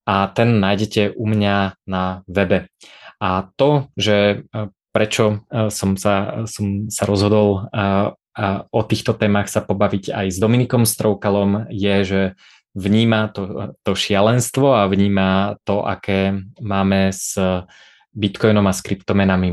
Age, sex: 20-39, male